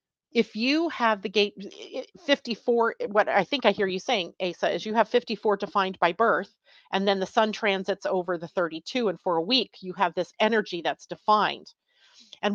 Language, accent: English, American